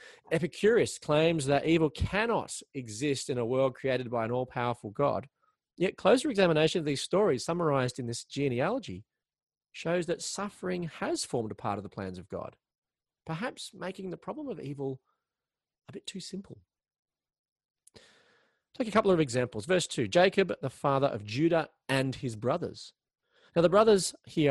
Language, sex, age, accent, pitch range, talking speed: English, male, 30-49, Australian, 120-180 Hz, 160 wpm